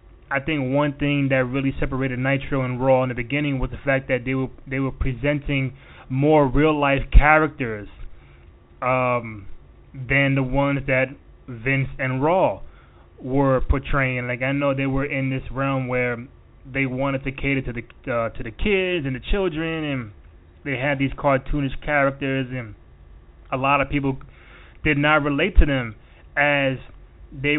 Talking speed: 165 wpm